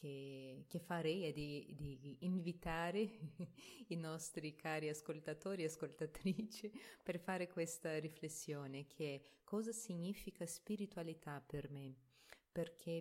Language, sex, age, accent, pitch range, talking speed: Italian, female, 30-49, native, 145-175 Hz, 110 wpm